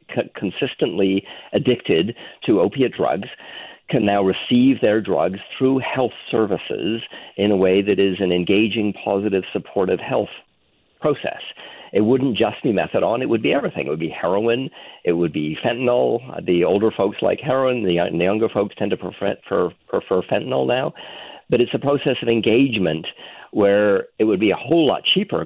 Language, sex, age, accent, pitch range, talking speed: English, male, 50-69, American, 100-125 Hz, 165 wpm